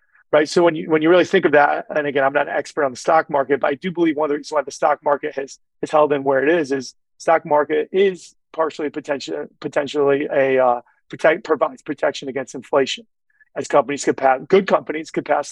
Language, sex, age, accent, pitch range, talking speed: English, male, 30-49, American, 140-170 Hz, 235 wpm